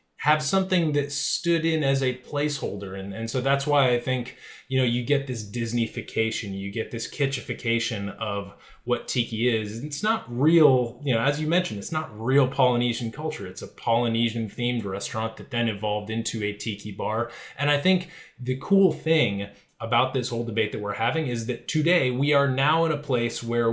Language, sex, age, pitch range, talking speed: English, male, 20-39, 115-140 Hz, 195 wpm